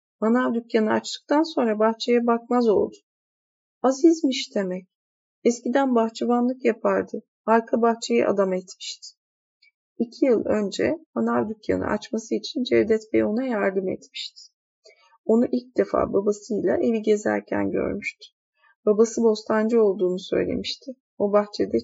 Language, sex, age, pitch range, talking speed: Turkish, female, 30-49, 195-245 Hz, 115 wpm